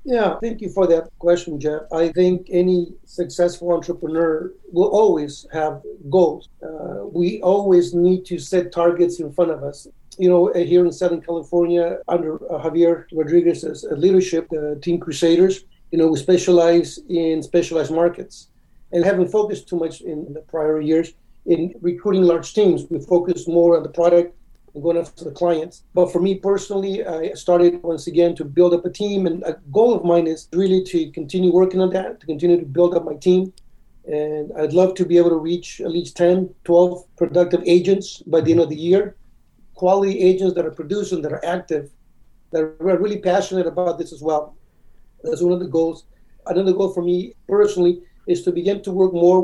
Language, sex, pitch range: English, male, 165-180 Hz